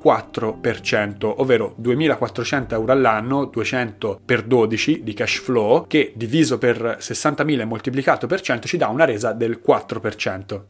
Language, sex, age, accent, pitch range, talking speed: Italian, male, 30-49, native, 115-145 Hz, 135 wpm